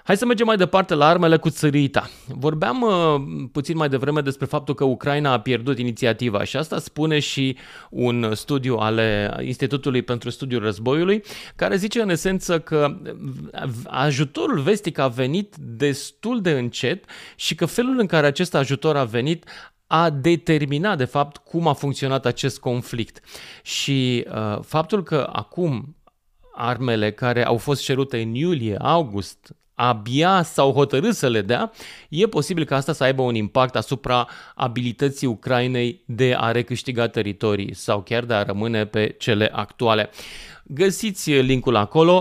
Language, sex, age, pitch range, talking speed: English, male, 30-49, 120-155 Hz, 155 wpm